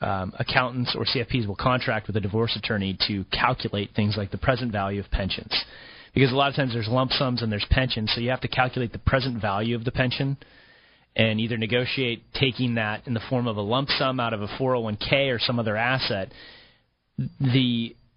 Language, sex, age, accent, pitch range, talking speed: English, male, 30-49, American, 110-130 Hz, 205 wpm